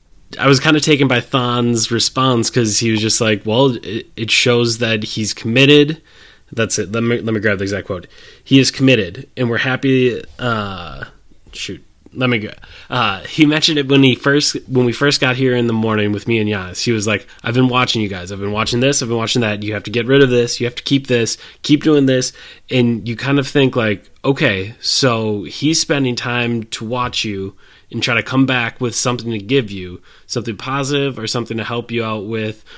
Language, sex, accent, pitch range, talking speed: English, male, American, 110-130 Hz, 225 wpm